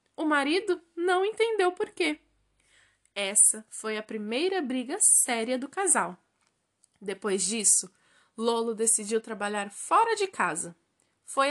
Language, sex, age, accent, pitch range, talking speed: Portuguese, female, 10-29, Brazilian, 220-340 Hz, 120 wpm